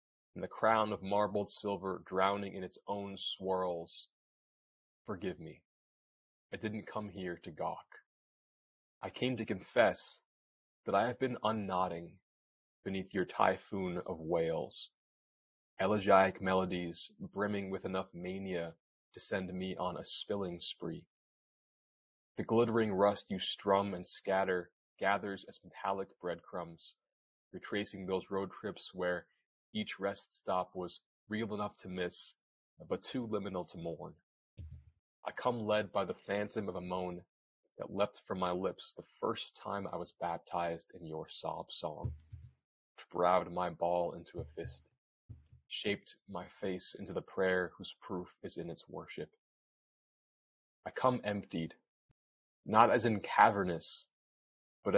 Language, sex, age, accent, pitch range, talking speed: English, male, 20-39, American, 90-100 Hz, 140 wpm